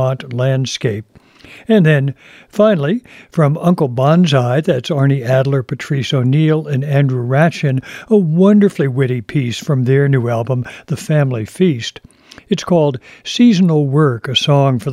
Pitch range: 130-160 Hz